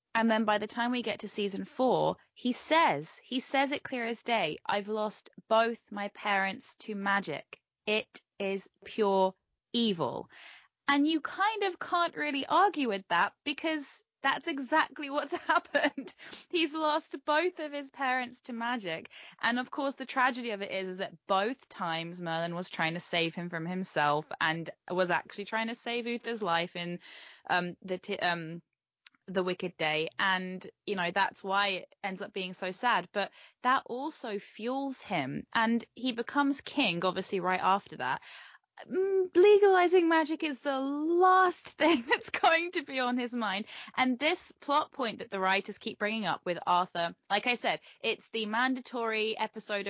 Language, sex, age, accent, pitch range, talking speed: English, female, 10-29, British, 190-280 Hz, 170 wpm